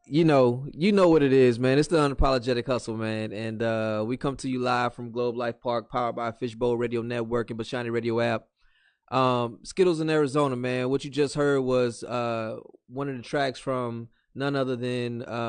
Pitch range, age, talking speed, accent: 110-125 Hz, 20-39, 205 wpm, American